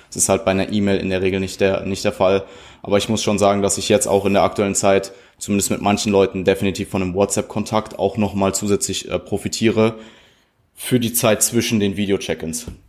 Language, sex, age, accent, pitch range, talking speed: German, male, 20-39, German, 95-115 Hz, 215 wpm